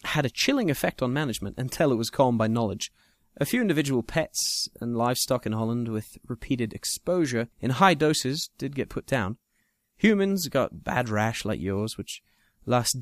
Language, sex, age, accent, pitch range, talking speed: English, male, 20-39, British, 110-150 Hz, 175 wpm